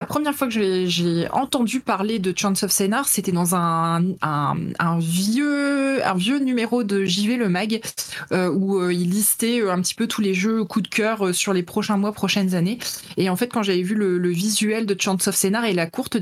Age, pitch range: 20-39, 180-220 Hz